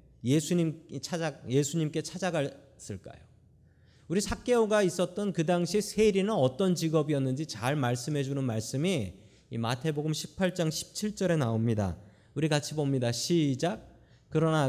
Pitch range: 125-175 Hz